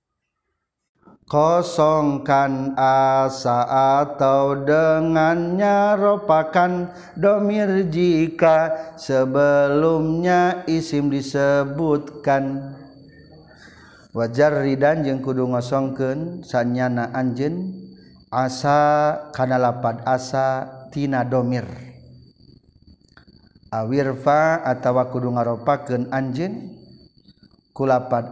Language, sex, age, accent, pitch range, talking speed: Indonesian, male, 50-69, native, 125-150 Hz, 55 wpm